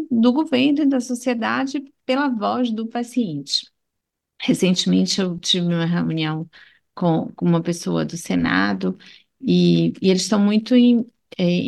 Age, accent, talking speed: 40-59, Brazilian, 130 wpm